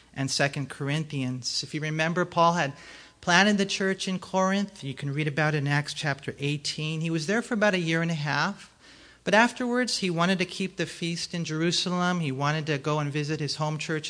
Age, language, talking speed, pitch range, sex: 40-59, English, 215 wpm, 140-175 Hz, male